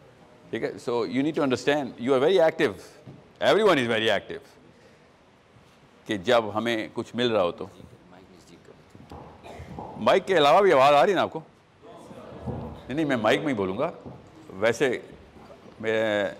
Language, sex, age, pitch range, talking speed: Urdu, male, 50-69, 100-125 Hz, 150 wpm